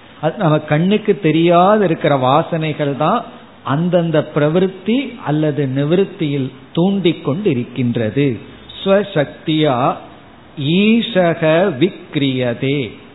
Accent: native